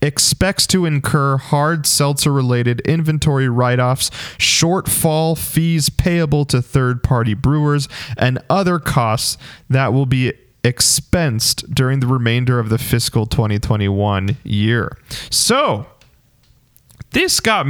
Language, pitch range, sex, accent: English, 120-155 Hz, male, American